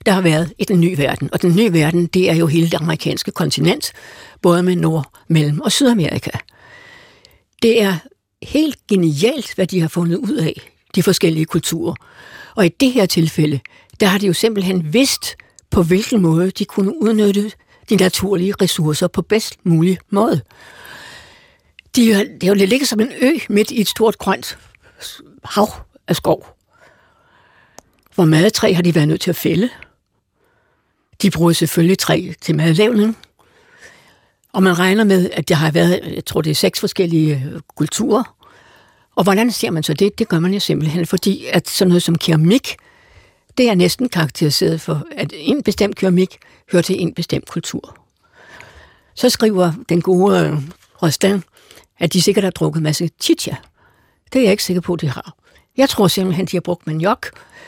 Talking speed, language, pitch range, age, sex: 175 wpm, Danish, 170-215 Hz, 60-79, female